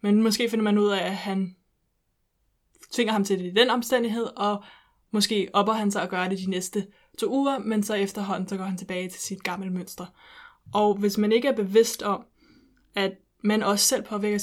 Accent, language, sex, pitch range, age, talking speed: native, Danish, female, 195-220 Hz, 20-39, 210 wpm